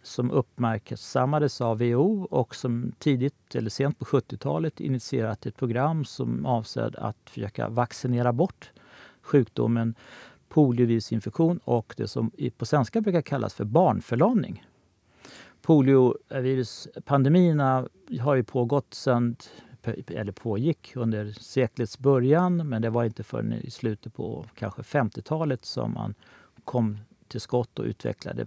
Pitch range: 115-145 Hz